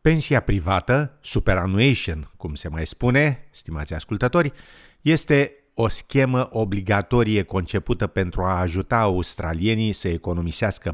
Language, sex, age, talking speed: Romanian, male, 50-69, 110 wpm